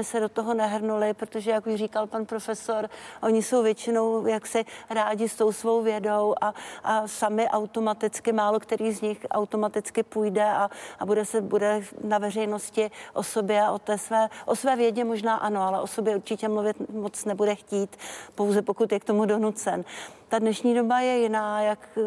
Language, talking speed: Czech, 180 wpm